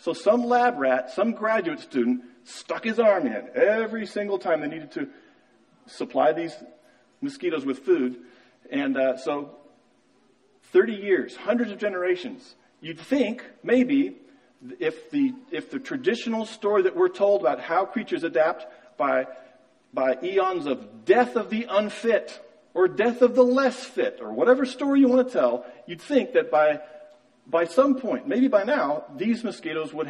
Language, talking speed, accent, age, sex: English, 160 wpm, American, 40-59, male